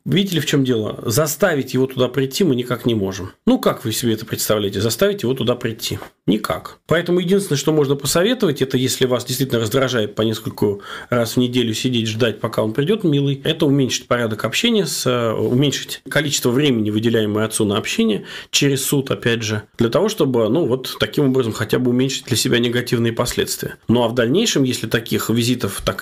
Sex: male